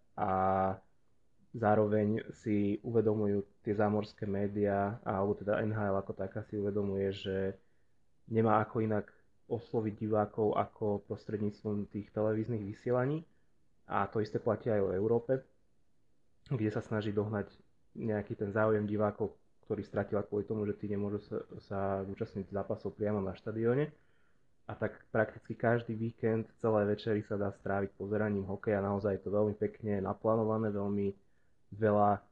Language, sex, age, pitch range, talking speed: Slovak, male, 20-39, 100-110 Hz, 135 wpm